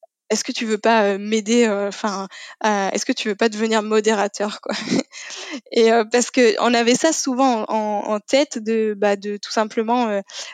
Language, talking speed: French, 195 wpm